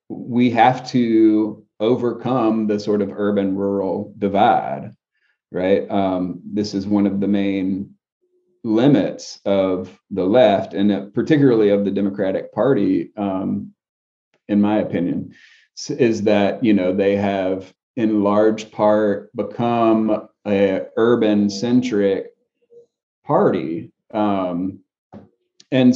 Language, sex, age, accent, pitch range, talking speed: English, male, 30-49, American, 100-125 Hz, 105 wpm